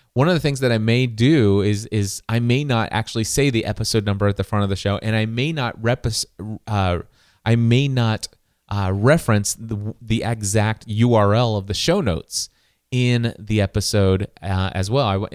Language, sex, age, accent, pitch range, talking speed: English, male, 30-49, American, 100-125 Hz, 195 wpm